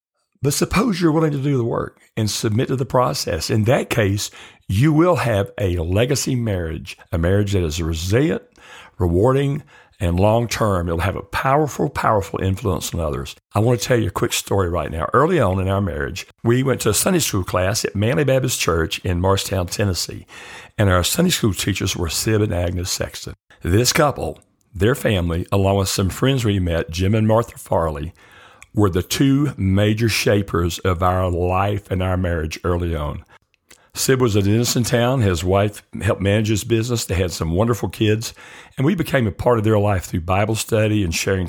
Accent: American